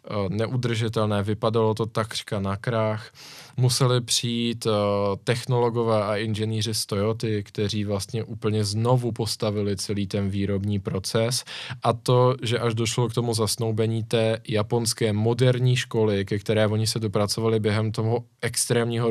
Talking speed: 130 wpm